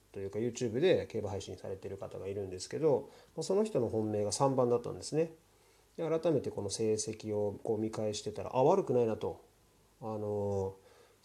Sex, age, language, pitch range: male, 30-49, Japanese, 105-155 Hz